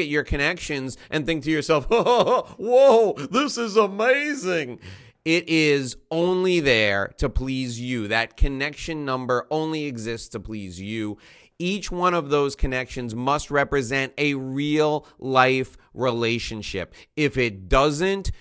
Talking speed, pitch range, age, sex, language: 135 wpm, 120-155 Hz, 30-49, male, English